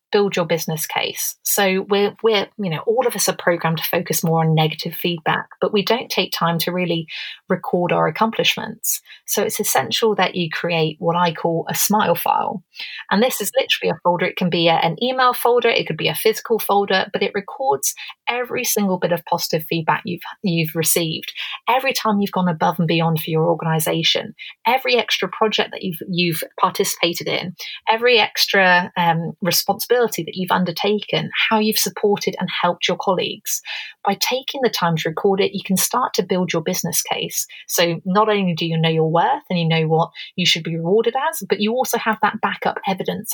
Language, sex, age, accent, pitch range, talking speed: English, female, 30-49, British, 170-215 Hz, 200 wpm